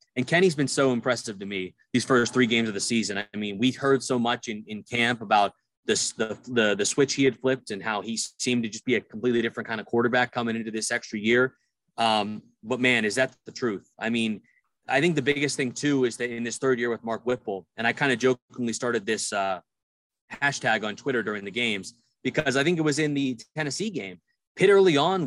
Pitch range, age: 115-145 Hz, 20-39